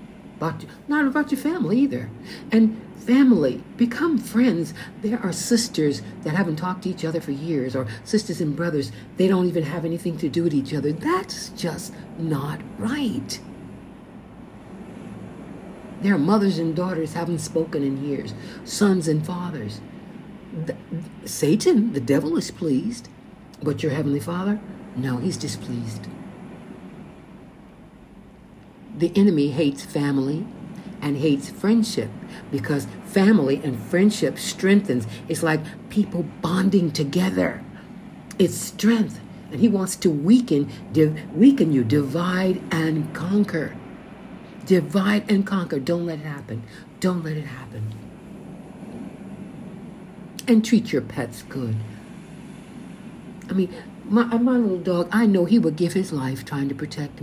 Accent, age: American, 60-79